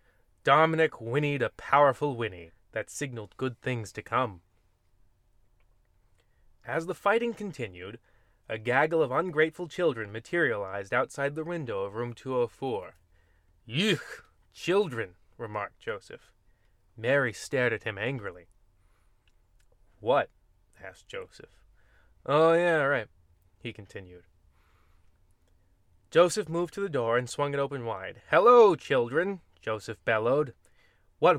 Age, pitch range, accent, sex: 20-39, 95-145 Hz, American, male